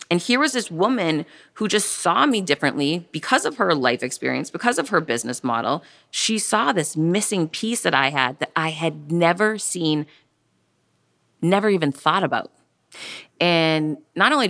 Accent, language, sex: American, English, female